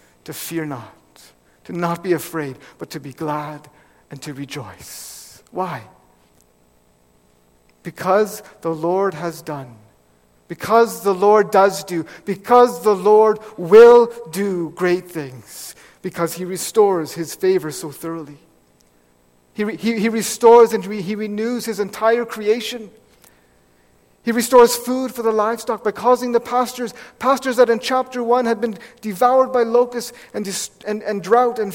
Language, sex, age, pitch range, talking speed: English, male, 50-69, 155-225 Hz, 140 wpm